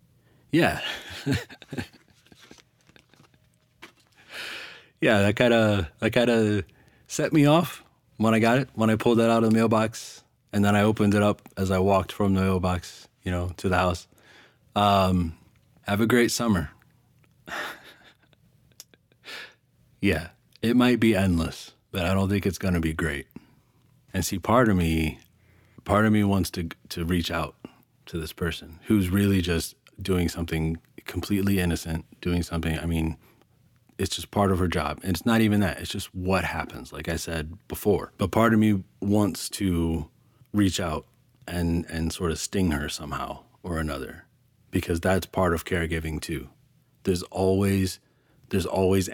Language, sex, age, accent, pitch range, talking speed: English, male, 30-49, American, 85-110 Hz, 160 wpm